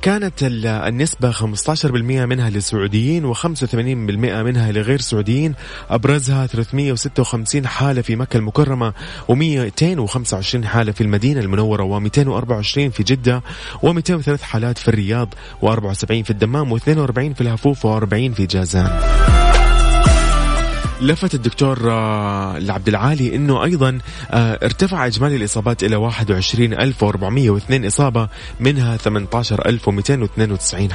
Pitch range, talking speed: 105-135 Hz, 95 wpm